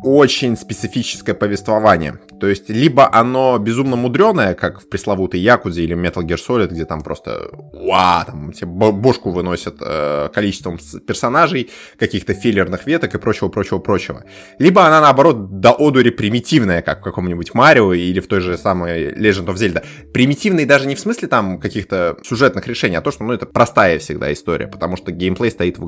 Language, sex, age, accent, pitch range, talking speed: Russian, male, 20-39, native, 95-135 Hz, 165 wpm